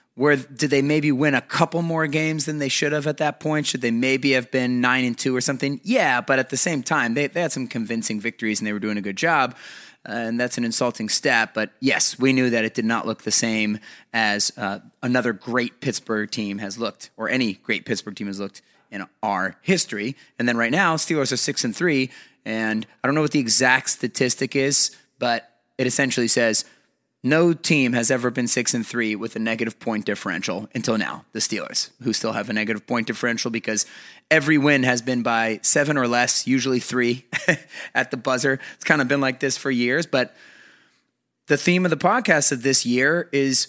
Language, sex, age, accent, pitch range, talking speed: English, male, 30-49, American, 120-150 Hz, 215 wpm